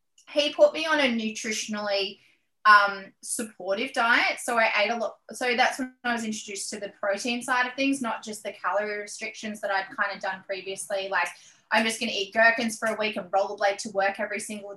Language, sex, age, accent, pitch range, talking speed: English, female, 20-39, Australian, 200-255 Hz, 215 wpm